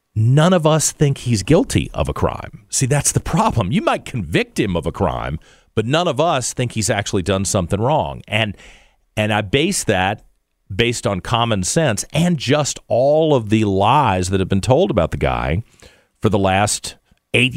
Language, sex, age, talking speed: English, male, 50-69, 190 wpm